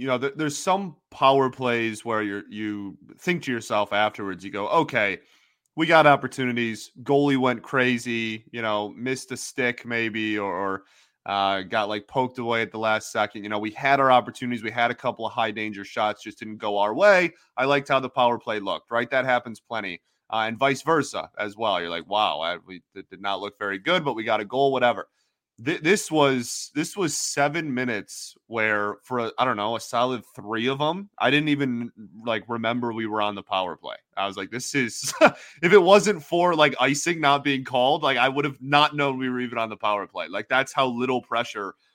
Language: English